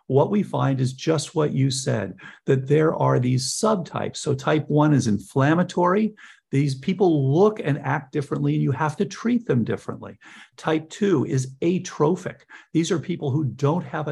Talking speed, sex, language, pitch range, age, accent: 175 wpm, male, English, 125-155 Hz, 50-69, American